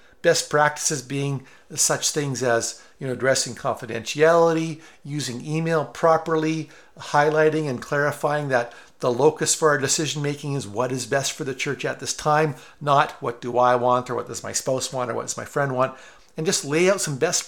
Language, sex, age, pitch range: English, male, 50-69, 125-160 Hz